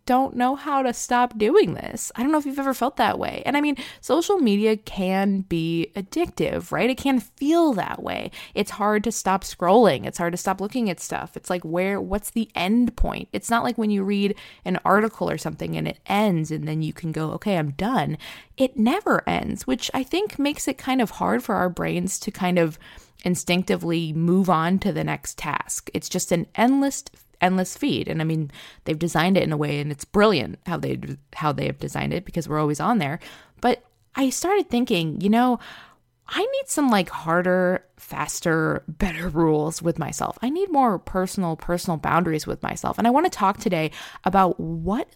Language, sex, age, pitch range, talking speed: English, female, 20-39, 170-245 Hz, 205 wpm